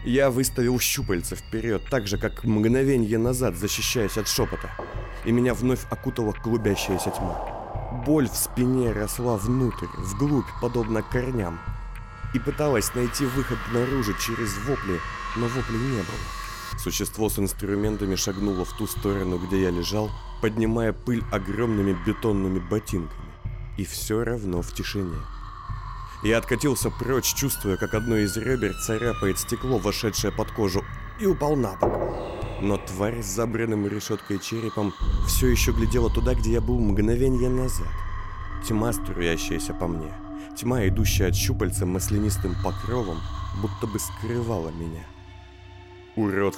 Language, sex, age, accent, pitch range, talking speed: Russian, male, 30-49, native, 95-120 Hz, 135 wpm